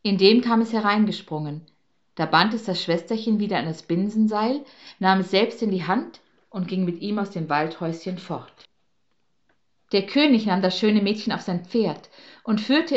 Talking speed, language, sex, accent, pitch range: 180 wpm, German, female, German, 170-215 Hz